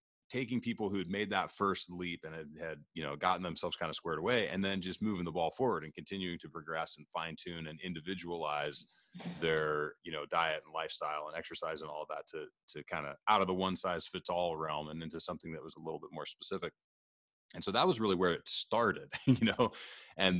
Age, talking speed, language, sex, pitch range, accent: 30-49, 230 wpm, English, male, 80-100 Hz, American